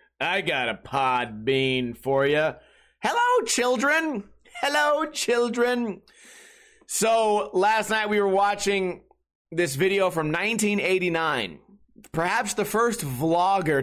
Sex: male